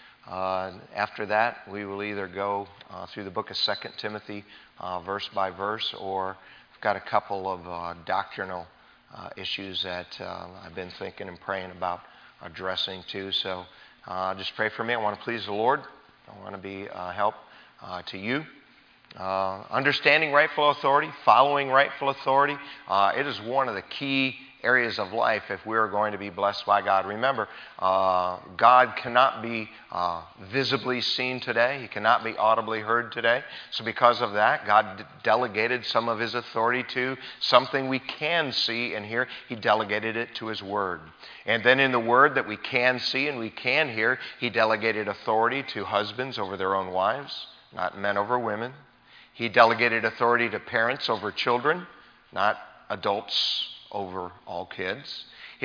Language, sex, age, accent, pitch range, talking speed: English, male, 40-59, American, 95-125 Hz, 175 wpm